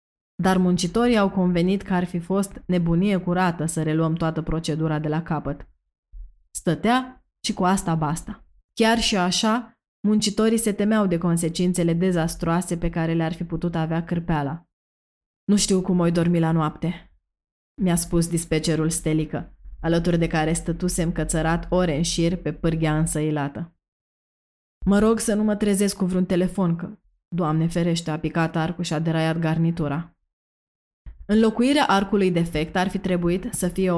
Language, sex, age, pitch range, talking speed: Romanian, female, 20-39, 160-185 Hz, 155 wpm